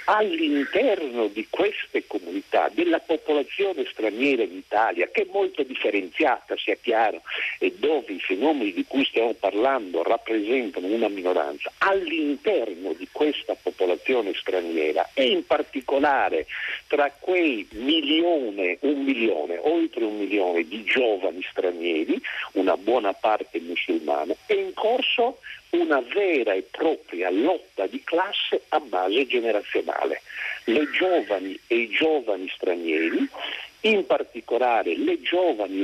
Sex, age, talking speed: male, 50-69, 120 wpm